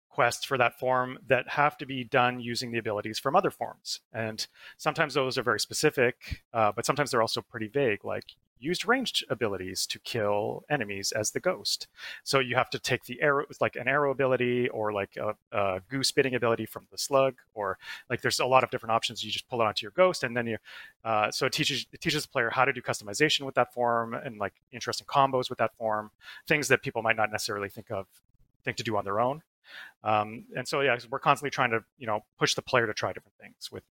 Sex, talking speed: male, 230 wpm